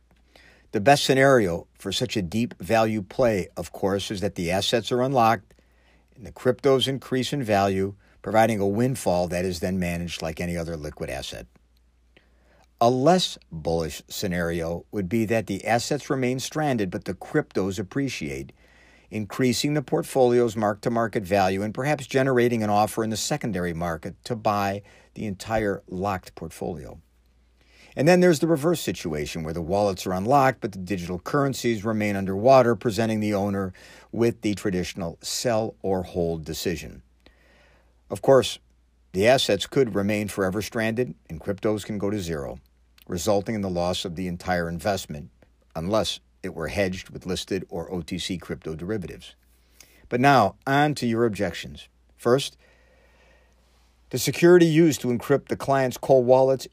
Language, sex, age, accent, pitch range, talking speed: English, male, 60-79, American, 85-120 Hz, 155 wpm